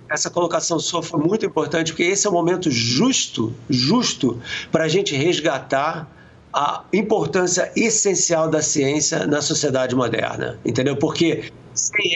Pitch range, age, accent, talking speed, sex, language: 135-170 Hz, 50-69, Brazilian, 140 wpm, male, English